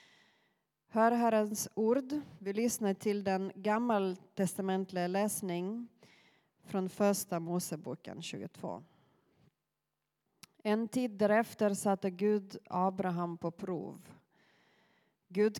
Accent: native